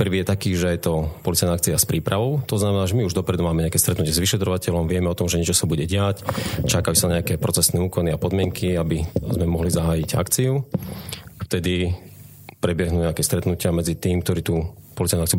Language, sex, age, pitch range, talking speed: Slovak, male, 30-49, 85-115 Hz, 200 wpm